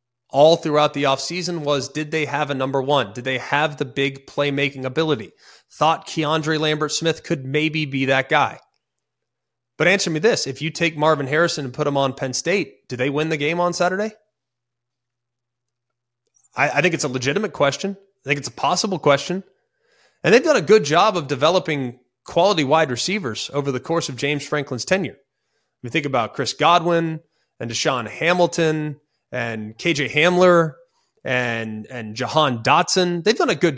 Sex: male